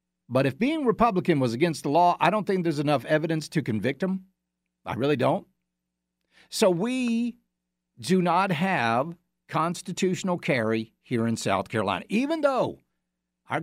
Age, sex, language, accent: 50-69, male, English, American